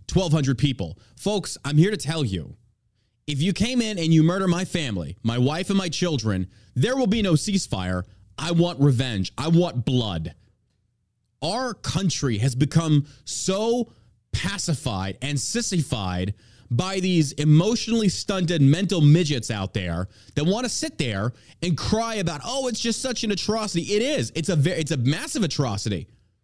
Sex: male